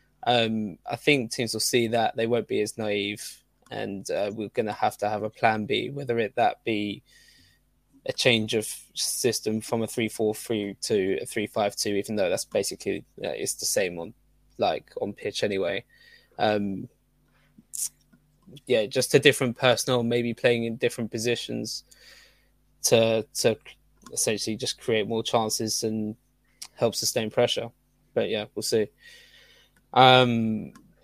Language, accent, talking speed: English, British, 155 wpm